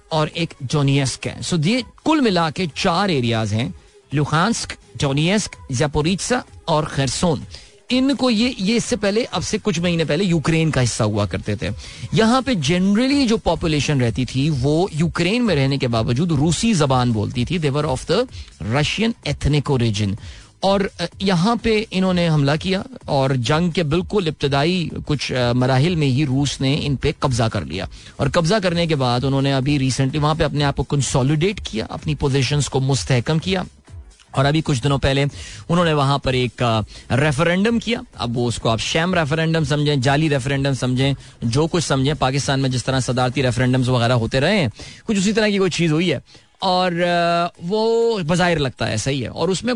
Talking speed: 170 wpm